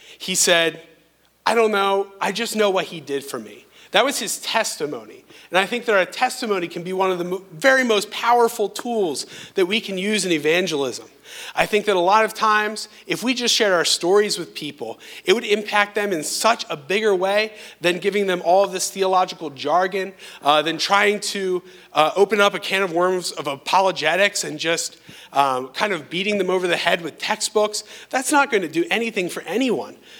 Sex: male